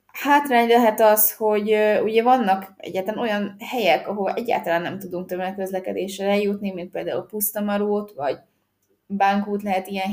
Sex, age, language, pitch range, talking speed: female, 20-39, Hungarian, 185-205 Hz, 135 wpm